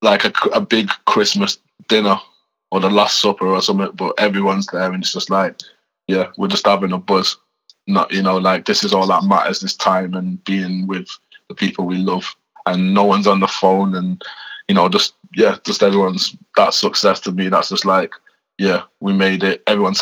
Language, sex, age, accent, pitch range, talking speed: English, male, 20-39, British, 100-130 Hz, 205 wpm